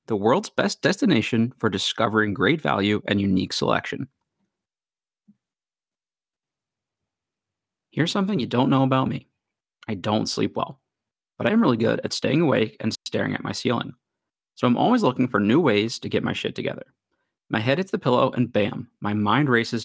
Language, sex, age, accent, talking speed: English, male, 30-49, American, 170 wpm